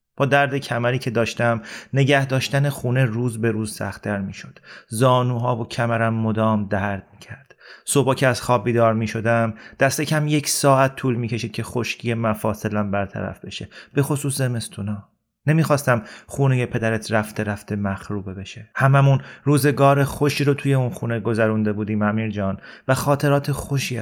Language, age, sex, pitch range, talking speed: Persian, 30-49, male, 110-140 Hz, 155 wpm